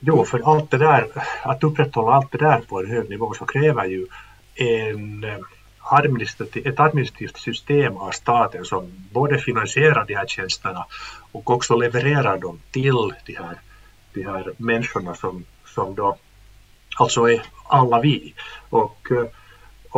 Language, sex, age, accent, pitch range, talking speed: Swedish, male, 50-69, Finnish, 105-135 Hz, 145 wpm